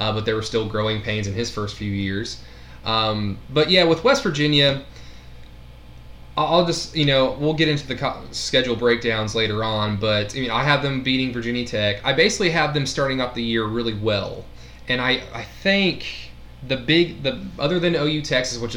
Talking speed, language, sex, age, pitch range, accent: 200 wpm, English, male, 20-39, 105-125 Hz, American